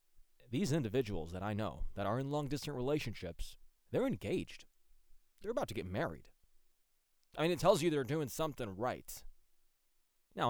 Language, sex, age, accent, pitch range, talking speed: English, male, 20-39, American, 90-130 Hz, 155 wpm